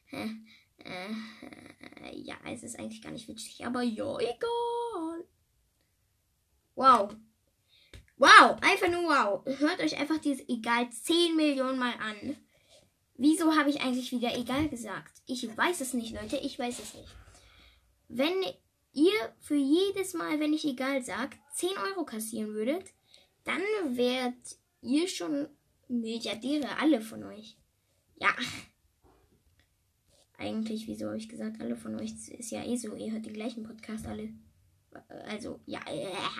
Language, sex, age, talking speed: German, female, 10-29, 140 wpm